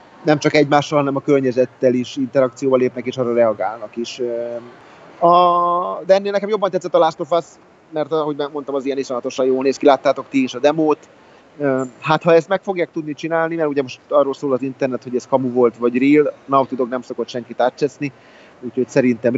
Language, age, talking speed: Hungarian, 30-49, 200 wpm